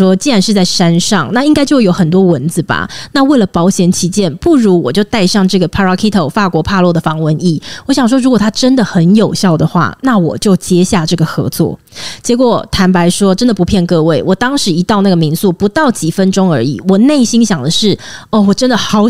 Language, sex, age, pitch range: Chinese, female, 20-39, 175-245 Hz